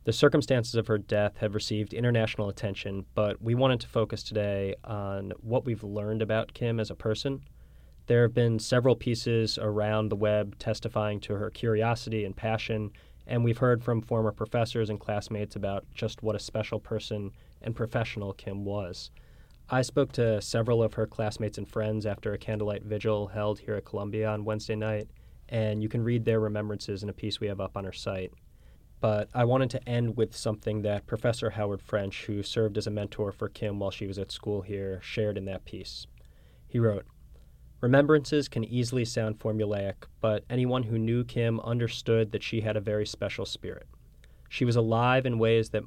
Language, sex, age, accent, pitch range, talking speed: English, male, 20-39, American, 105-115 Hz, 190 wpm